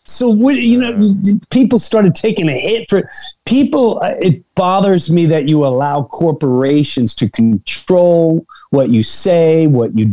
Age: 40-59